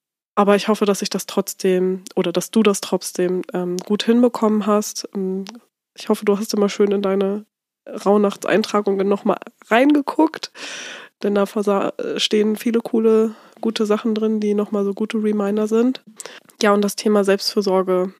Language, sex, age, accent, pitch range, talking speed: German, female, 20-39, German, 190-215 Hz, 150 wpm